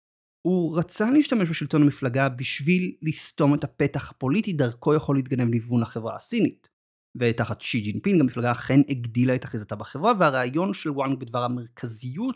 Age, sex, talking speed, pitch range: 30-49, male, 145 wpm, 120-155 Hz